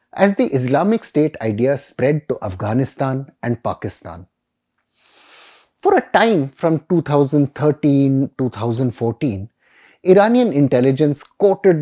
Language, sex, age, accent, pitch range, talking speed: English, male, 30-49, Indian, 120-170 Hz, 90 wpm